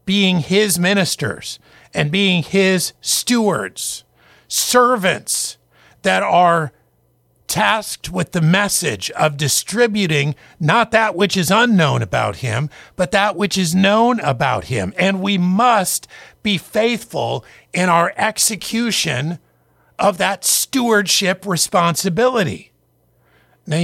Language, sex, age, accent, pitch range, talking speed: English, male, 50-69, American, 160-210 Hz, 110 wpm